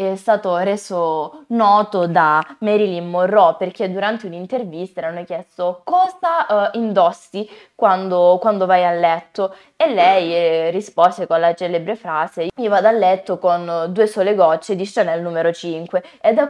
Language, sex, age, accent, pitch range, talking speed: Italian, female, 20-39, native, 175-220 Hz, 155 wpm